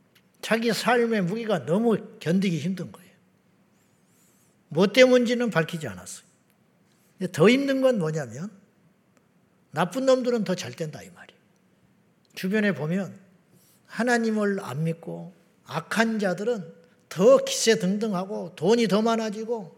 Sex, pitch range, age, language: male, 175-230 Hz, 50-69, Korean